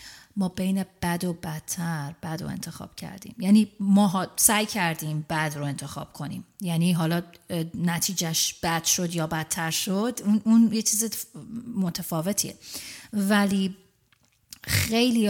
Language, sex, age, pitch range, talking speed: Persian, female, 30-49, 170-205 Hz, 125 wpm